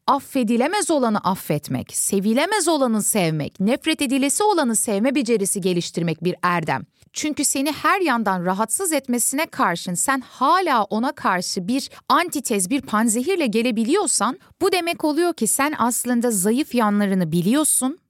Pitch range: 200-275 Hz